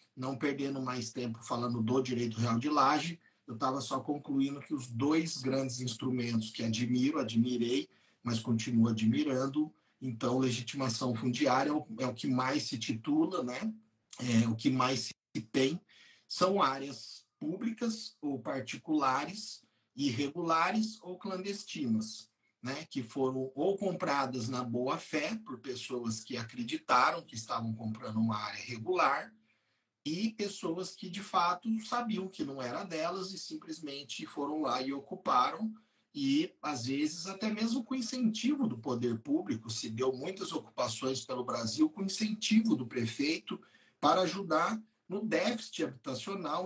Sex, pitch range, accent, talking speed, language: male, 125-190 Hz, Brazilian, 135 wpm, Portuguese